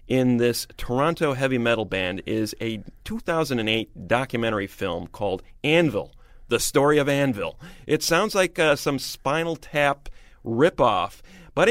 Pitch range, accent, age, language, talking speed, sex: 105-150 Hz, American, 40-59, English, 135 wpm, male